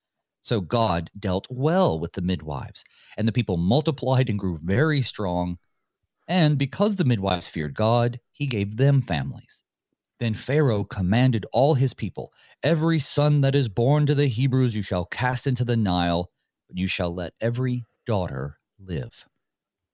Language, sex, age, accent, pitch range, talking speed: English, male, 30-49, American, 100-145 Hz, 155 wpm